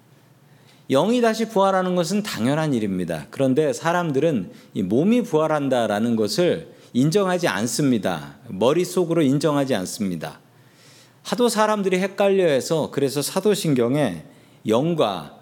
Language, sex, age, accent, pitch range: Korean, male, 40-59, native, 120-175 Hz